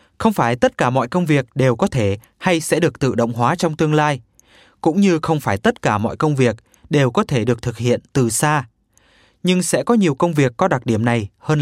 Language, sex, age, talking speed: Vietnamese, male, 20-39, 245 wpm